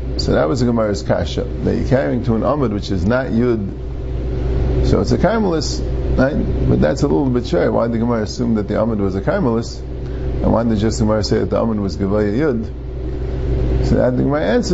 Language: English